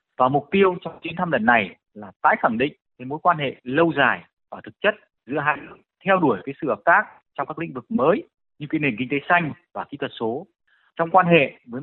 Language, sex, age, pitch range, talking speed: Vietnamese, male, 20-39, 125-170 Hz, 245 wpm